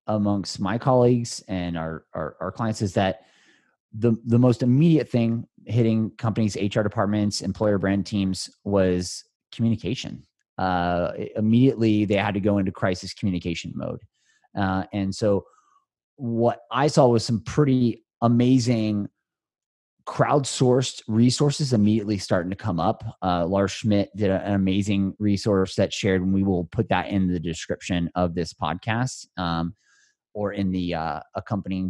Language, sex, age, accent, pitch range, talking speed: English, male, 30-49, American, 95-115 Hz, 145 wpm